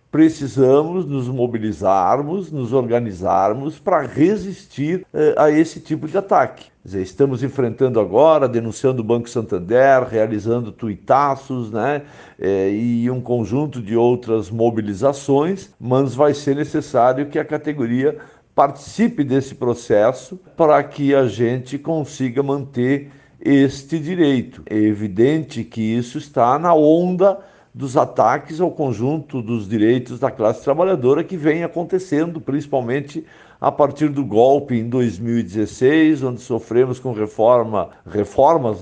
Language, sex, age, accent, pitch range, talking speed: Portuguese, male, 60-79, Brazilian, 120-155 Hz, 115 wpm